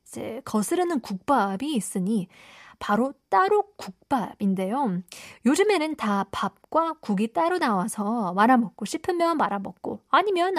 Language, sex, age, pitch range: Korean, female, 20-39, 200-265 Hz